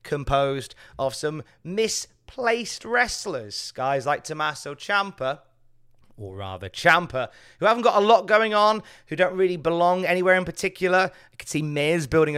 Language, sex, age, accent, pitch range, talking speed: English, male, 30-49, British, 125-175 Hz, 150 wpm